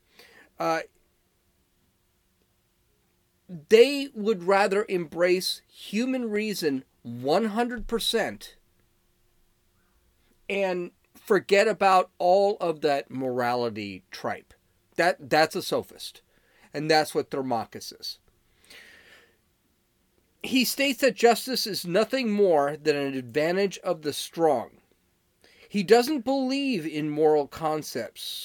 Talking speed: 95 wpm